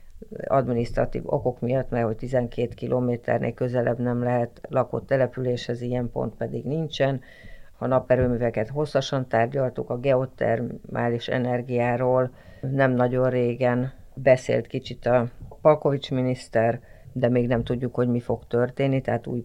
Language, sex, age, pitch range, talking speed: Hungarian, female, 50-69, 120-130 Hz, 130 wpm